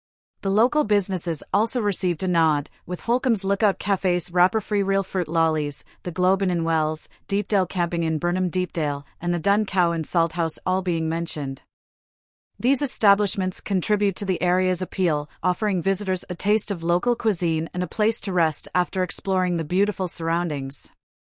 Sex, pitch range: female, 165-200 Hz